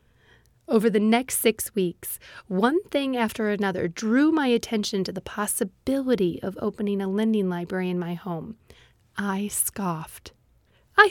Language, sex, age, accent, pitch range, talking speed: English, female, 30-49, American, 190-260 Hz, 140 wpm